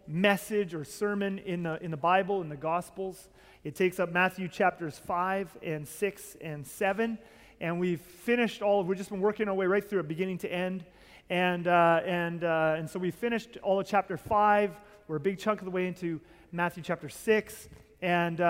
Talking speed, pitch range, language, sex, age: 200 wpm, 170-200 Hz, English, male, 30-49